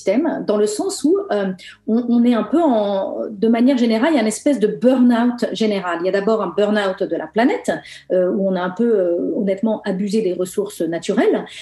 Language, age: French, 40-59